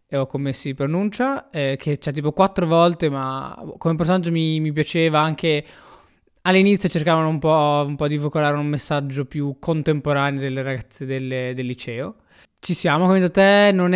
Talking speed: 175 wpm